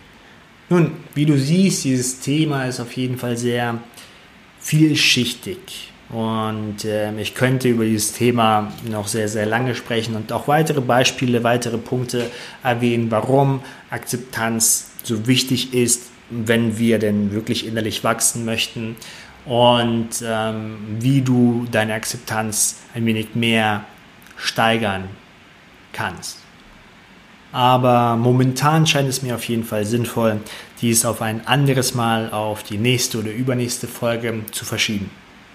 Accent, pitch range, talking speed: German, 110-130 Hz, 130 wpm